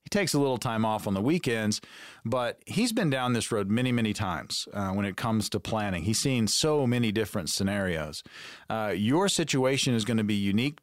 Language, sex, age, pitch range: English, male, 40-59, 110-145 Hz